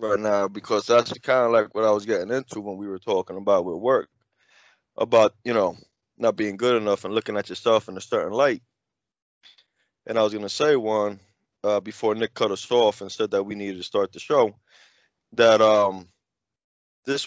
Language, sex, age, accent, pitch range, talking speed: English, male, 20-39, American, 100-120 Hz, 205 wpm